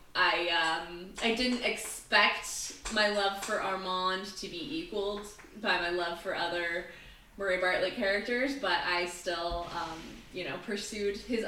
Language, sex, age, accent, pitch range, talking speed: English, female, 20-39, American, 175-225 Hz, 145 wpm